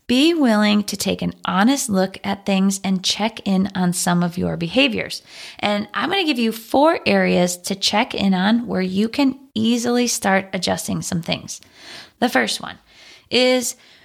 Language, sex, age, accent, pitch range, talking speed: English, female, 20-39, American, 200-255 Hz, 170 wpm